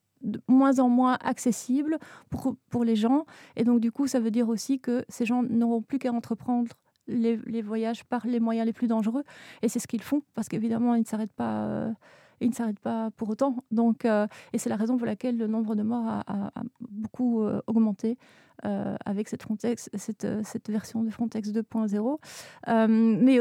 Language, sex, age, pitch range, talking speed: French, female, 30-49, 225-250 Hz, 185 wpm